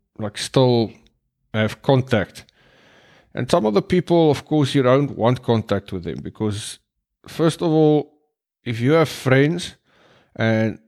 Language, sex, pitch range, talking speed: English, male, 110-145 Hz, 145 wpm